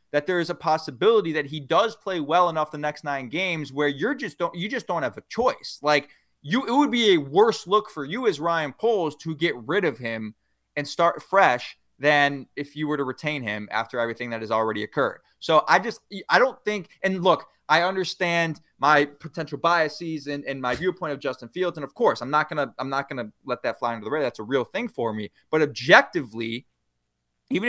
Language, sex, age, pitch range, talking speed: English, male, 20-39, 145-195 Hz, 225 wpm